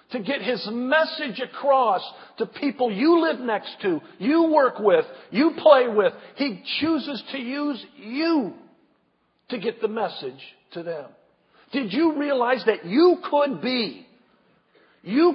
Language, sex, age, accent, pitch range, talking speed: English, male, 50-69, American, 185-290 Hz, 140 wpm